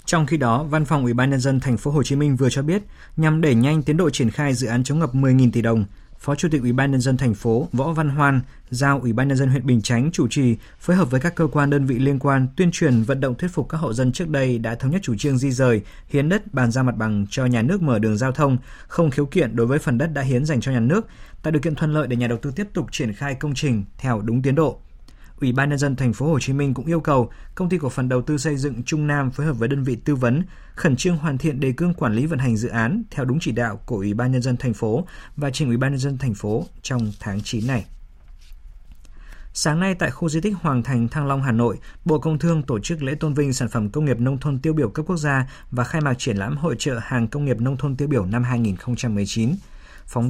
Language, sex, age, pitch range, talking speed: Vietnamese, male, 20-39, 120-150 Hz, 285 wpm